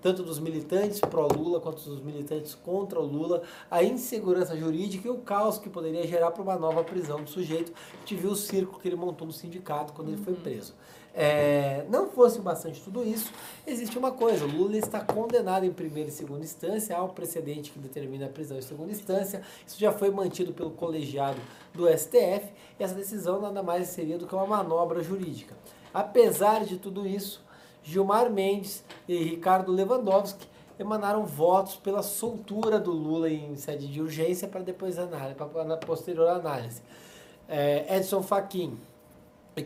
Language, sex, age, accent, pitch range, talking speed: Portuguese, male, 20-39, Brazilian, 160-200 Hz, 175 wpm